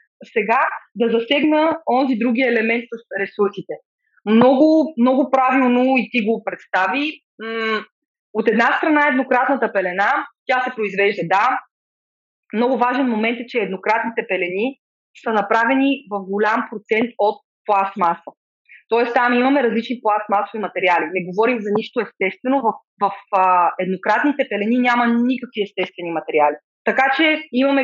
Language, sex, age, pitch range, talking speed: Bulgarian, female, 20-39, 205-260 Hz, 130 wpm